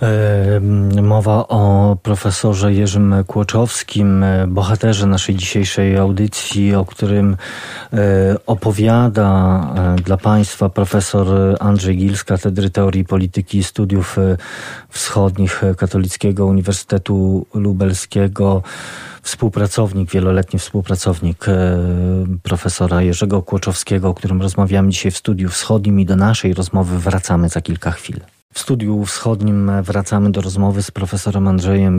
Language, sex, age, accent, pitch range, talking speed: Polish, male, 40-59, native, 95-105 Hz, 105 wpm